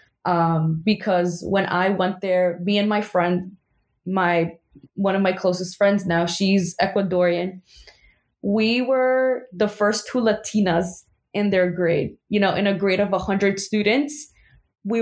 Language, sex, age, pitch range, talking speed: English, female, 20-39, 180-215 Hz, 150 wpm